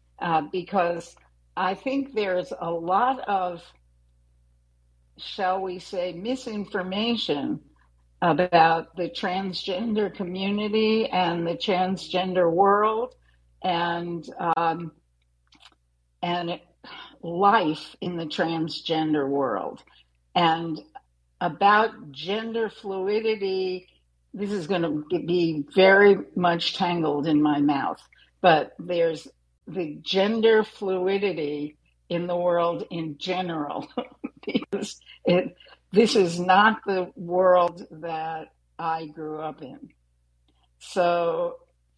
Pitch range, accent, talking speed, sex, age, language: 155-195 Hz, American, 95 wpm, female, 60-79, English